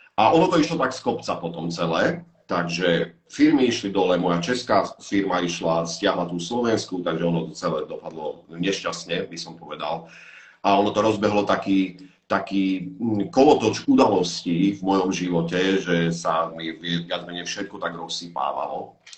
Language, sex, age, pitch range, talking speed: Slovak, male, 40-59, 85-115 Hz, 150 wpm